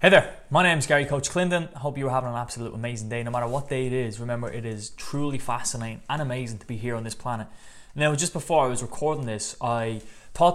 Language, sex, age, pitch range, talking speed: English, male, 20-39, 110-140 Hz, 250 wpm